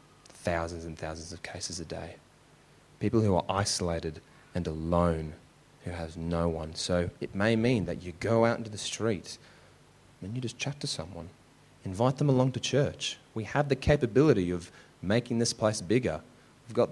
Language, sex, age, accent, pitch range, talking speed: English, male, 30-49, Australian, 90-125 Hz, 175 wpm